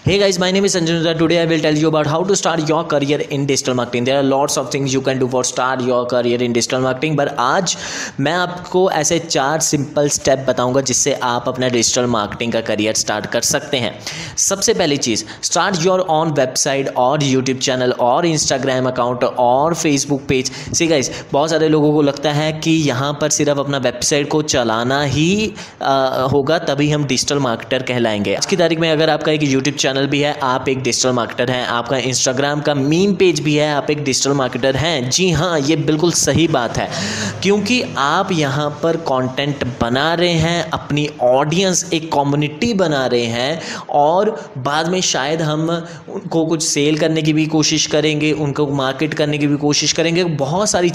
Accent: native